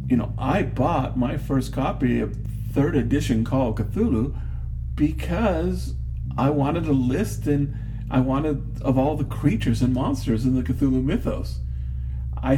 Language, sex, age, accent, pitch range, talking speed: English, male, 50-69, American, 105-125 Hz, 150 wpm